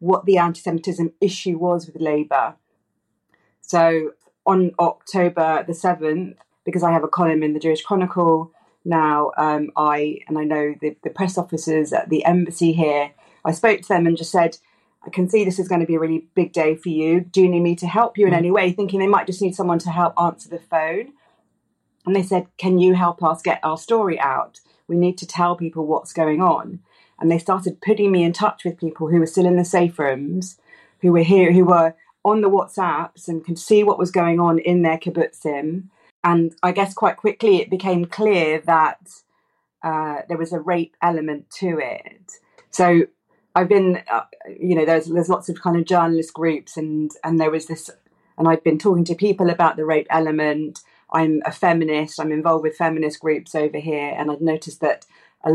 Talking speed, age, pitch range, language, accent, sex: 205 wpm, 30-49, 160-185 Hz, English, British, female